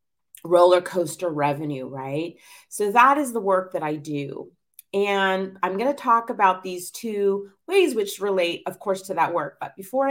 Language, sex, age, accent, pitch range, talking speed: English, female, 30-49, American, 175-230 Hz, 180 wpm